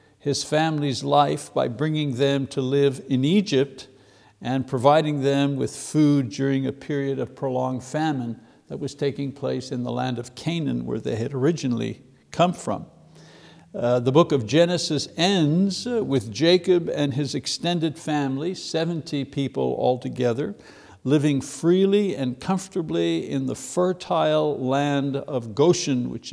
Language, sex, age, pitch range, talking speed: English, male, 60-79, 130-165 Hz, 140 wpm